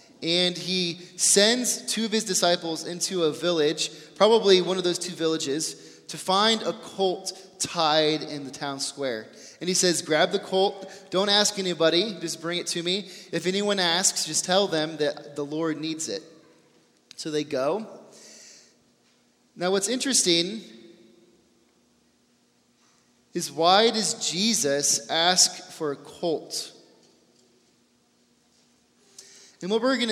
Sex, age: male, 30-49